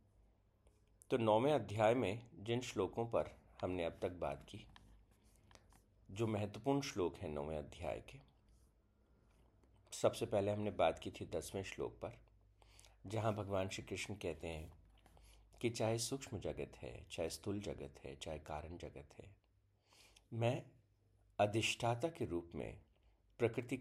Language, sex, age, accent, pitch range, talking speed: Hindi, male, 50-69, native, 90-110 Hz, 135 wpm